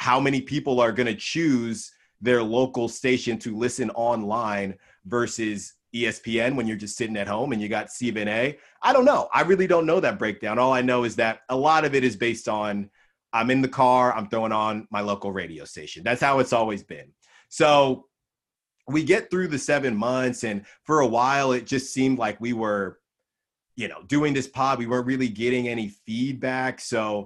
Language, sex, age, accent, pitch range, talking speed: English, male, 30-49, American, 105-130 Hz, 205 wpm